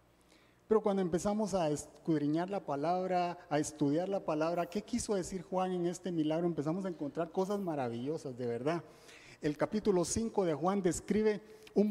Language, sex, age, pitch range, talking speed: Spanish, male, 40-59, 145-205 Hz, 160 wpm